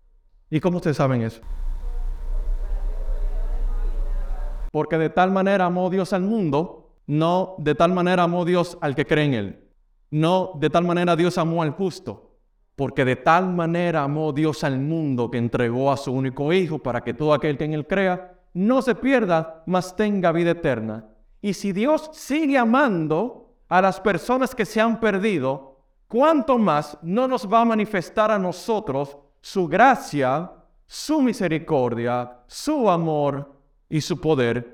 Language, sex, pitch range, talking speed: Spanish, male, 130-185 Hz, 155 wpm